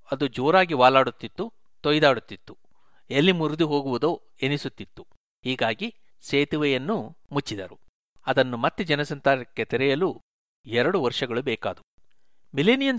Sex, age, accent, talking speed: male, 60-79, native, 90 wpm